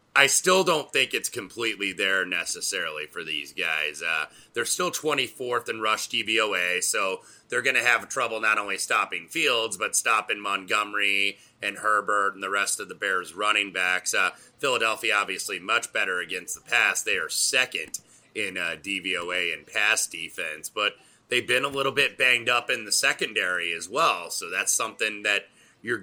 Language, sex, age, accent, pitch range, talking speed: English, male, 30-49, American, 100-115 Hz, 175 wpm